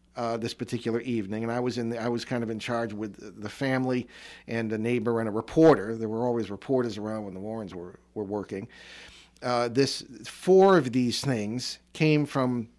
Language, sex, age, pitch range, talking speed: English, male, 50-69, 115-150 Hz, 190 wpm